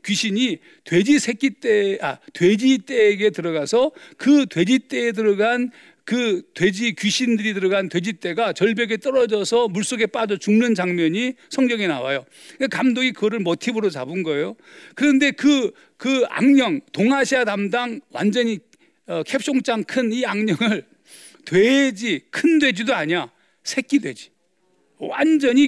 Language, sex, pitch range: Korean, male, 210-275 Hz